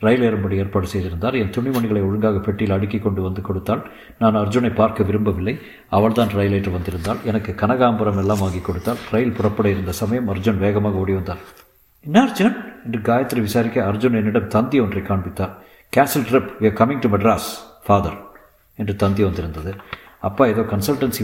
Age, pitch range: 50-69, 100-120 Hz